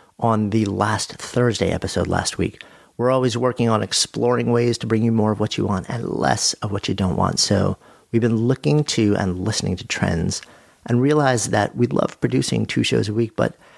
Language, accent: English, American